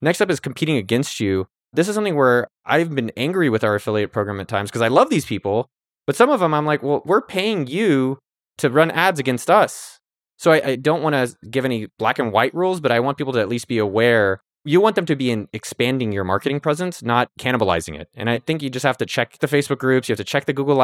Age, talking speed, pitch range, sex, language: 20-39, 260 wpm, 110-145 Hz, male, English